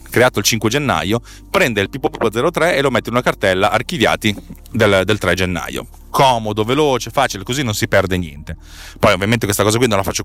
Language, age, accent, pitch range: Italian, 30-49, native, 95-120 Hz